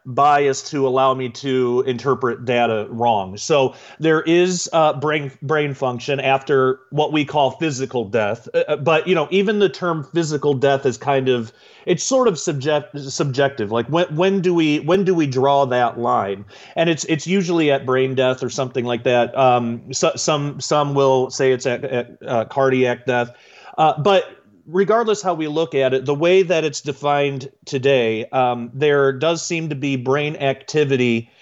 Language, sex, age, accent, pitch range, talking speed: English, male, 30-49, American, 125-155 Hz, 180 wpm